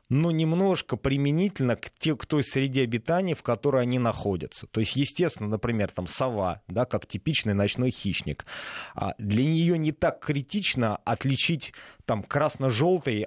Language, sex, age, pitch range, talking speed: Russian, male, 30-49, 110-145 Hz, 135 wpm